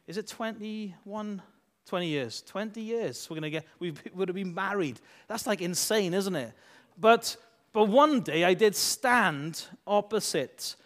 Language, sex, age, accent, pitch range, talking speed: English, male, 30-49, British, 185-245 Hz, 160 wpm